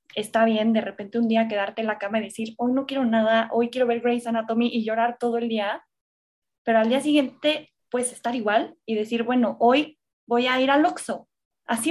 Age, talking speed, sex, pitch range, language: 20-39, 220 wpm, female, 220-260 Hz, Spanish